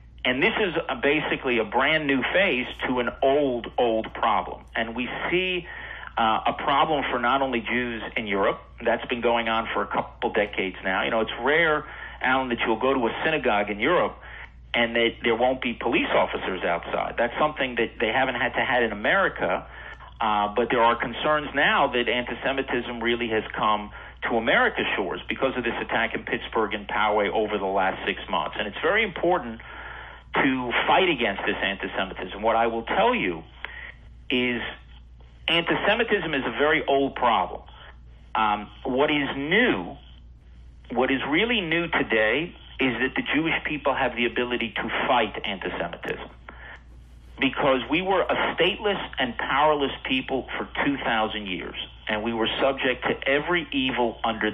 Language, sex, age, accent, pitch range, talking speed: English, male, 50-69, American, 110-135 Hz, 165 wpm